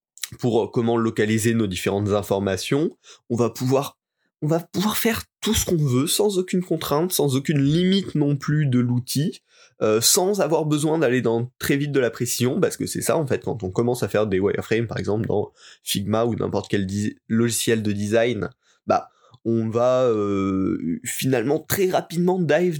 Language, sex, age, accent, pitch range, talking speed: French, male, 20-39, French, 110-150 Hz, 185 wpm